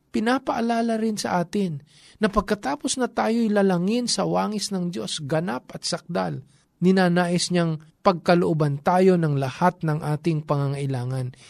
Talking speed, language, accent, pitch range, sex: 130 wpm, Filipino, native, 135-185 Hz, male